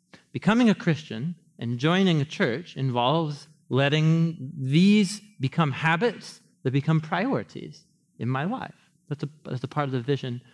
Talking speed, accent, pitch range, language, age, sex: 150 wpm, American, 135-175 Hz, English, 30-49, male